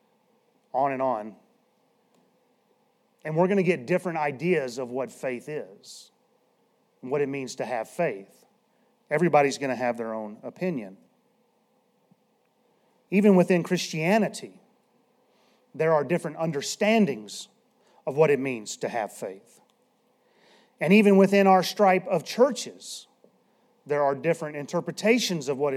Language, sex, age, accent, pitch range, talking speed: English, male, 40-59, American, 155-225 Hz, 130 wpm